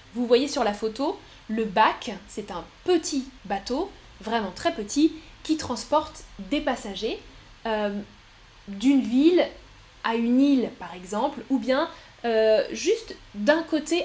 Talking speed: 135 wpm